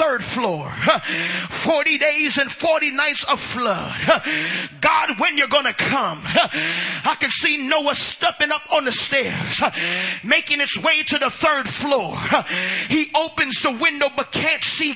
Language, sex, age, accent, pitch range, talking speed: English, male, 30-49, American, 275-330 Hz, 150 wpm